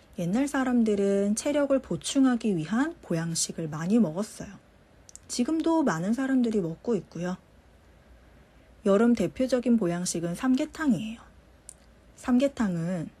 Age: 40-59